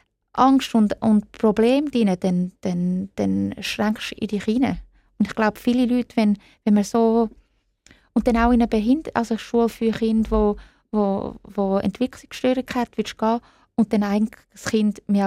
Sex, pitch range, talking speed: female, 205-230 Hz, 185 wpm